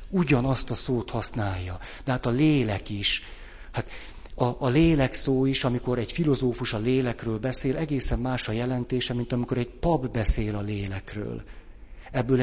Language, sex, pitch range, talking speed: Hungarian, male, 105-130 Hz, 160 wpm